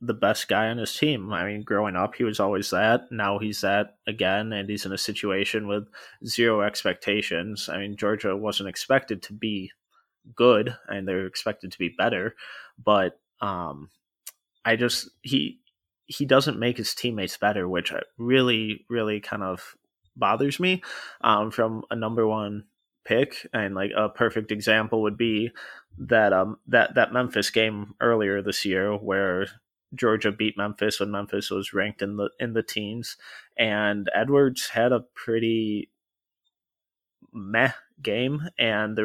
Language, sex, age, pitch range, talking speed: English, male, 20-39, 100-115 Hz, 155 wpm